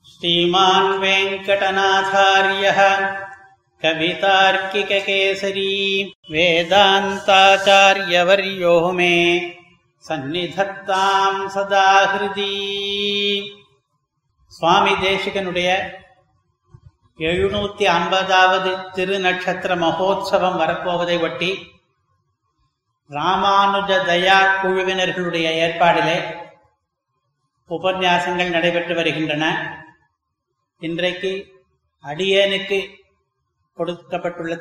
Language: Tamil